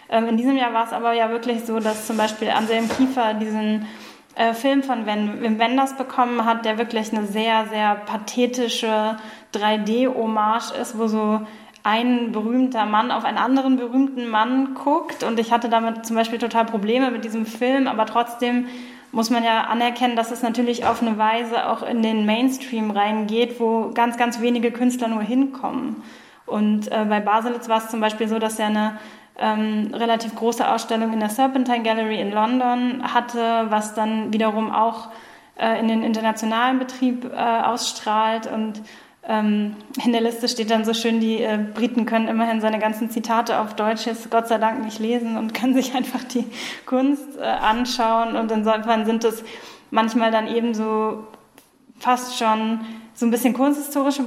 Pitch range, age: 220-245 Hz, 10-29